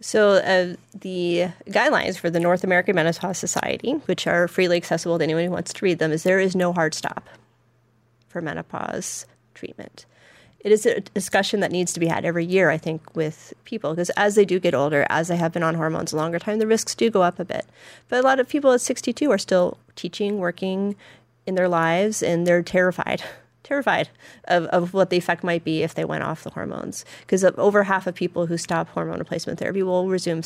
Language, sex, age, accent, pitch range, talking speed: English, female, 30-49, American, 165-200 Hz, 215 wpm